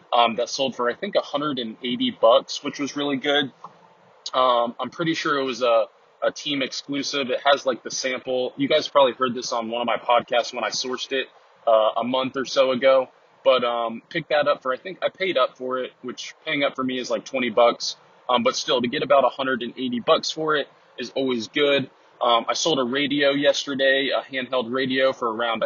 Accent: American